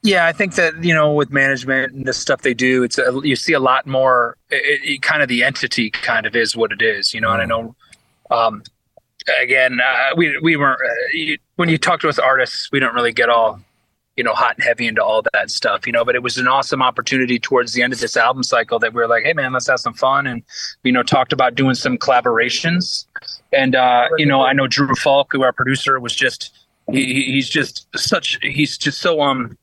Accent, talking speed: American, 240 wpm